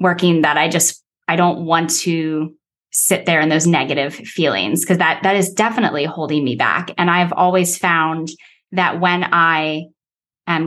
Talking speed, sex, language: 170 wpm, female, English